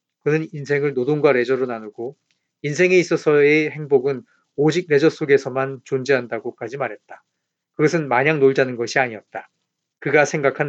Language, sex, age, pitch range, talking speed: English, male, 40-59, 135-160 Hz, 110 wpm